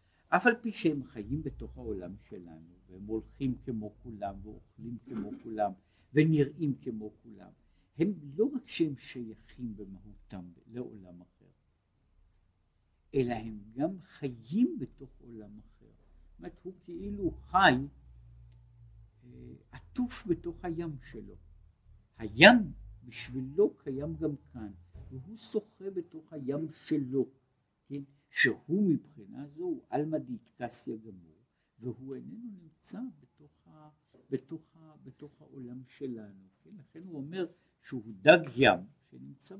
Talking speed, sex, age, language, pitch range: 110 wpm, male, 60-79, Hebrew, 105-160 Hz